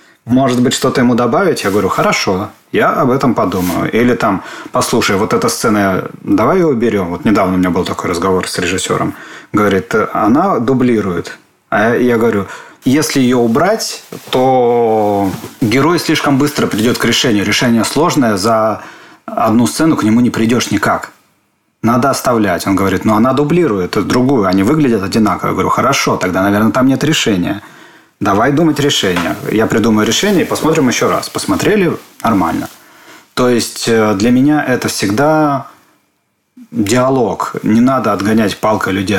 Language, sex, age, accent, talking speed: Russian, male, 30-49, native, 155 wpm